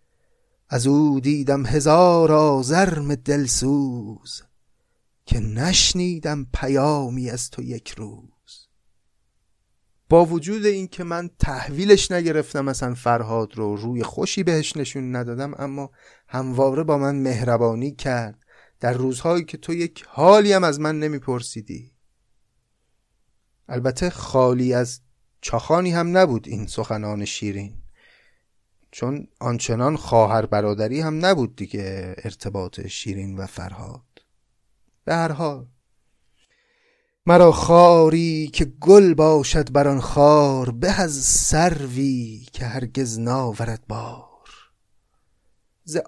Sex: male